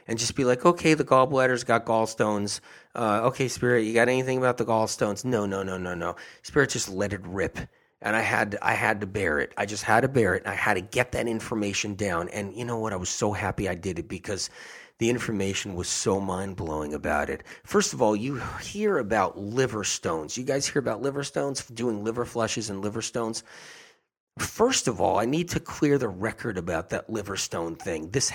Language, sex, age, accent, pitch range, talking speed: English, male, 30-49, American, 105-130 Hz, 220 wpm